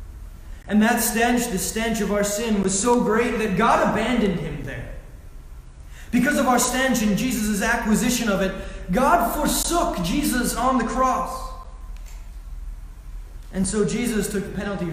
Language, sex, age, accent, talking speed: English, male, 20-39, American, 150 wpm